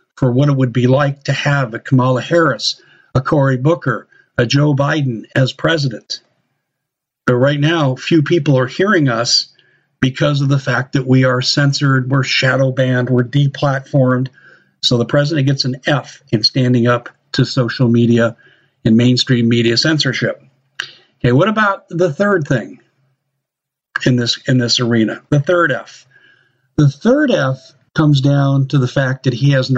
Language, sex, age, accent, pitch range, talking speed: English, male, 50-69, American, 125-145 Hz, 165 wpm